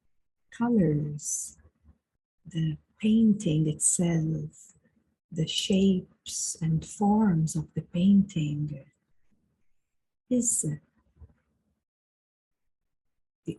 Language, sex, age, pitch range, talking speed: English, female, 50-69, 155-195 Hz, 55 wpm